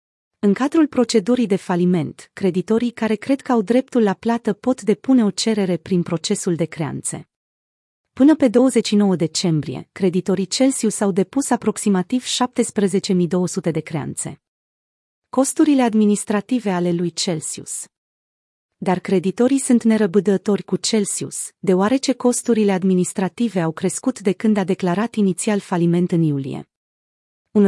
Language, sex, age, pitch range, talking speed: Romanian, female, 30-49, 175-225 Hz, 125 wpm